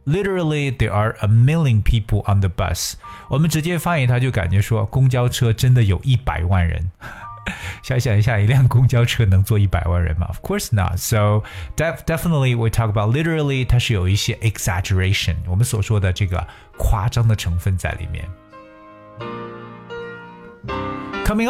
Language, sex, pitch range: Chinese, male, 95-120 Hz